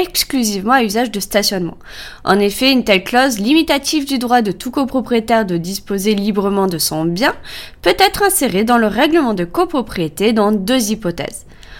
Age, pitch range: 20-39, 200-275 Hz